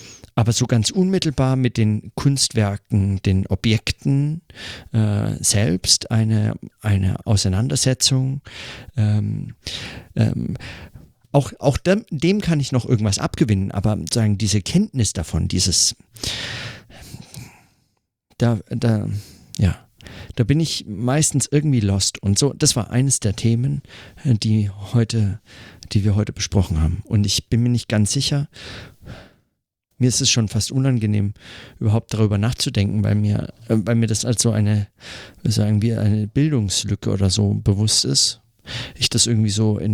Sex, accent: male, German